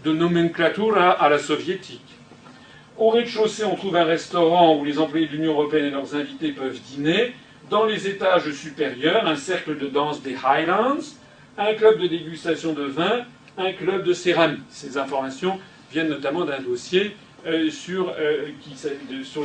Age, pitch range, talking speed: 40-59, 150-190 Hz, 155 wpm